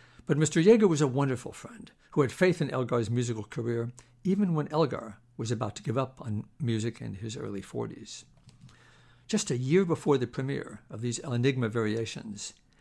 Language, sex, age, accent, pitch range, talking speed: English, male, 60-79, American, 120-155 Hz, 185 wpm